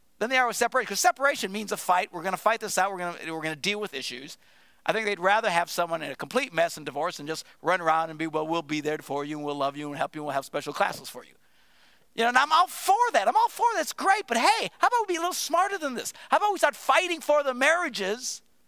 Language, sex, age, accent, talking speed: English, male, 50-69, American, 305 wpm